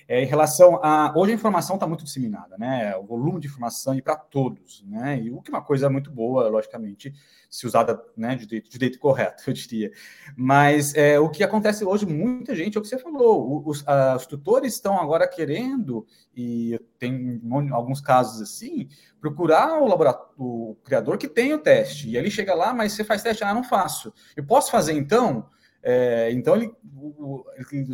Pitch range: 125-200 Hz